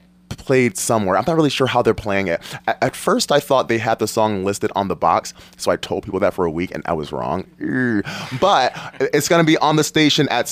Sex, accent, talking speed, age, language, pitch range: male, American, 240 wpm, 20-39, English, 110-145 Hz